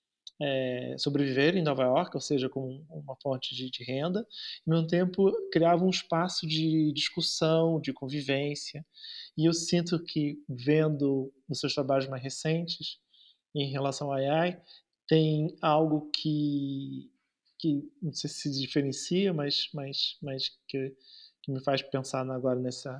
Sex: male